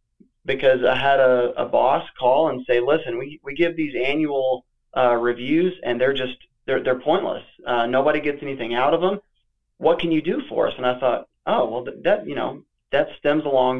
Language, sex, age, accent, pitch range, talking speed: English, male, 20-39, American, 125-155 Hz, 210 wpm